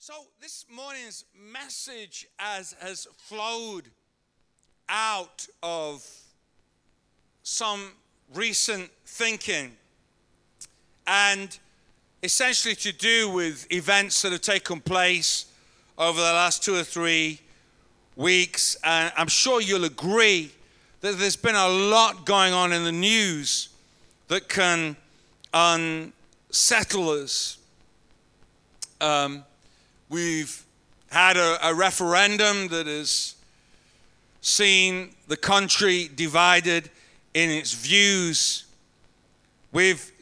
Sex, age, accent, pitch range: male, 50-69, British, 155-200 Hz